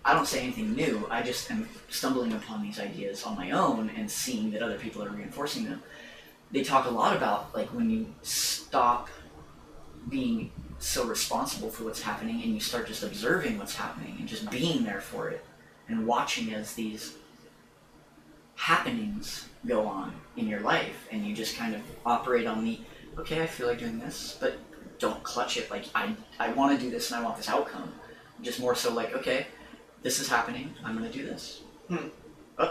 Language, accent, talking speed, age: English, American, 190 wpm, 30-49